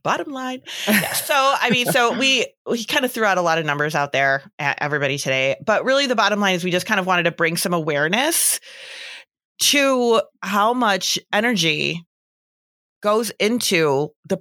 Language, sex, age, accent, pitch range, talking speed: English, female, 30-49, American, 155-200 Hz, 180 wpm